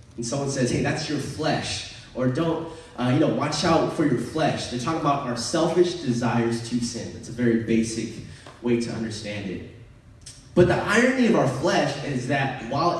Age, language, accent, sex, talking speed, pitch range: 20-39, English, American, male, 190 wpm, 120-160 Hz